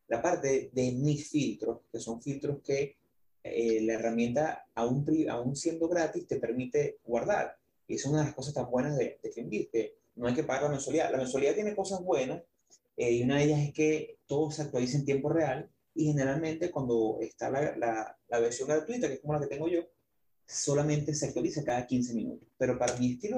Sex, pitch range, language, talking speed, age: male, 120-155 Hz, Spanish, 210 wpm, 30-49